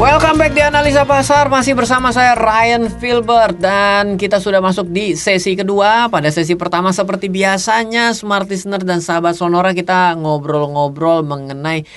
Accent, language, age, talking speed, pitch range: native, Indonesian, 20-39, 145 wpm, 130-190 Hz